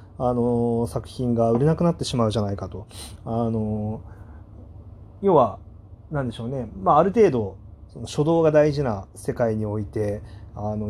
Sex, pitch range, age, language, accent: male, 105-125 Hz, 30-49, Japanese, native